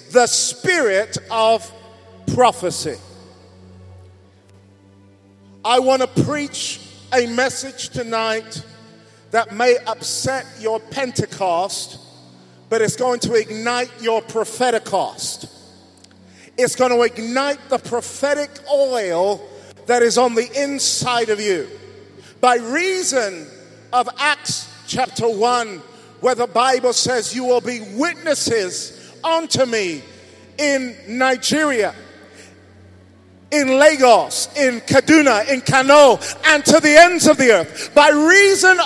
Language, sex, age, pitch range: English, male, 40-59, 220-300 Hz